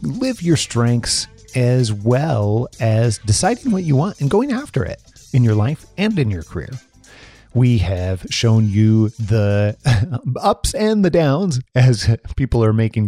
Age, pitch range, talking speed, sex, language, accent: 30-49, 110-140 Hz, 155 wpm, male, English, American